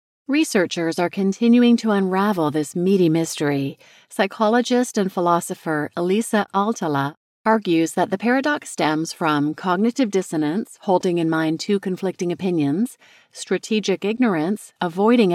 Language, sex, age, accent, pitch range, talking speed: English, female, 40-59, American, 160-220 Hz, 115 wpm